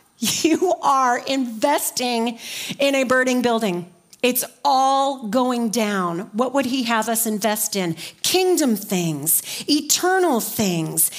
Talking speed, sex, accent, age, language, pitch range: 120 wpm, female, American, 40-59, English, 210-285 Hz